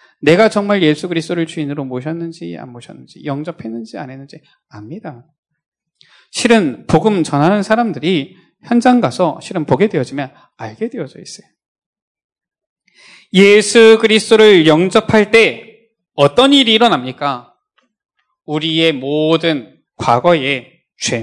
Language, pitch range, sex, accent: Korean, 150-230 Hz, male, native